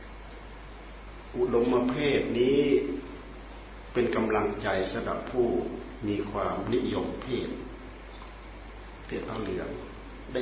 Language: Thai